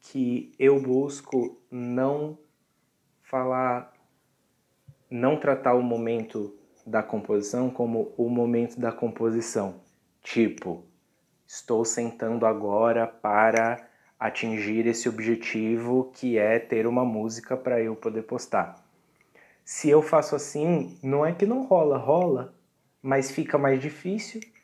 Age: 20-39